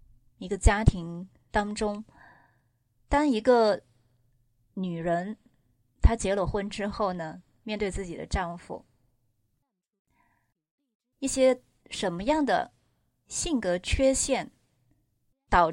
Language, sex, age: Chinese, female, 20-39